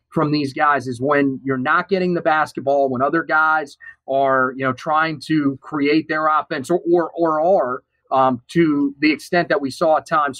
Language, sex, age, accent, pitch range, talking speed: English, male, 30-49, American, 140-175 Hz, 195 wpm